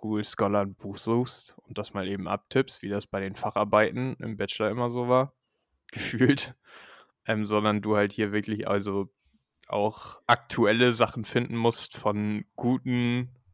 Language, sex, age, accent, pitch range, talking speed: German, male, 10-29, German, 105-125 Hz, 155 wpm